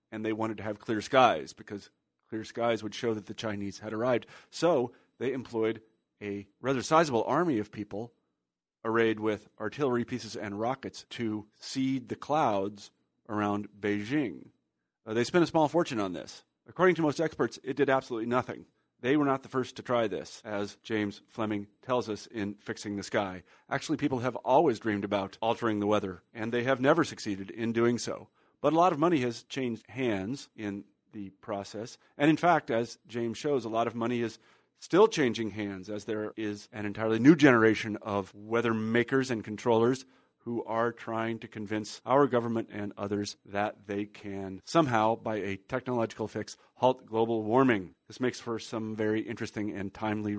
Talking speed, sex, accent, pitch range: 180 wpm, male, American, 105-120 Hz